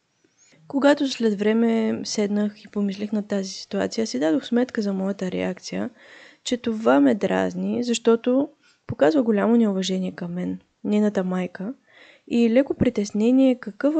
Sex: female